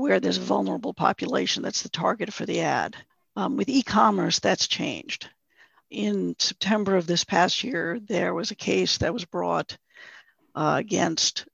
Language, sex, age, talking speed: English, female, 50-69, 160 wpm